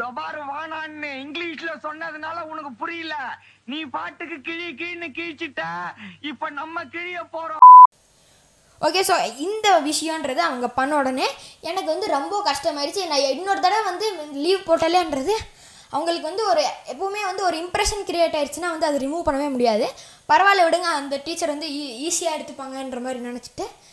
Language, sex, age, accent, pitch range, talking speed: Tamil, female, 20-39, native, 285-355 Hz, 140 wpm